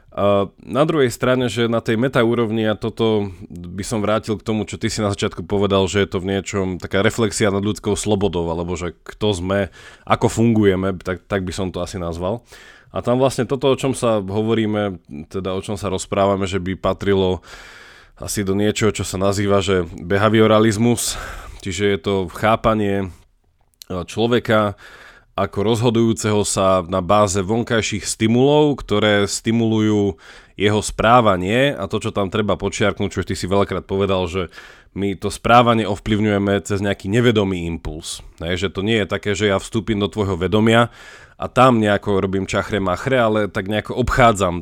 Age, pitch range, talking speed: 20-39, 95-110 Hz, 165 wpm